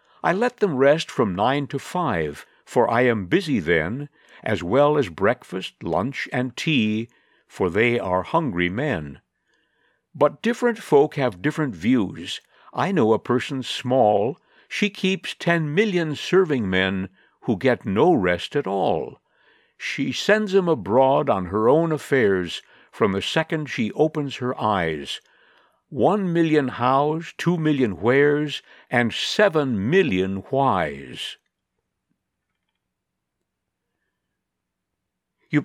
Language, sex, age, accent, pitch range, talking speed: English, male, 60-79, American, 110-165 Hz, 125 wpm